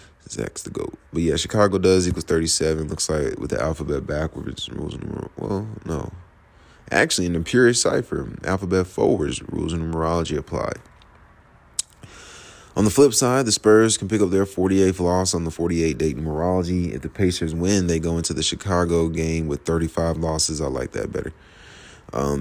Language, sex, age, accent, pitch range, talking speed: English, male, 20-39, American, 80-90 Hz, 175 wpm